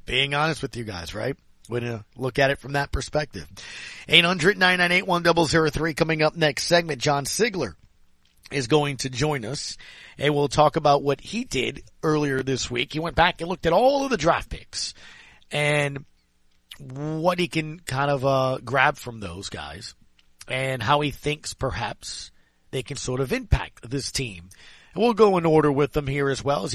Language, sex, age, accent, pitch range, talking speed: English, male, 40-59, American, 125-155 Hz, 185 wpm